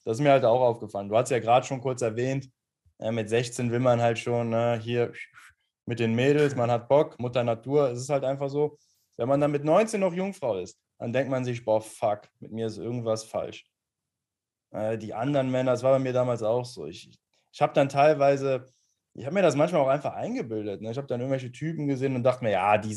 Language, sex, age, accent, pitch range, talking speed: German, male, 20-39, German, 115-140 Hz, 235 wpm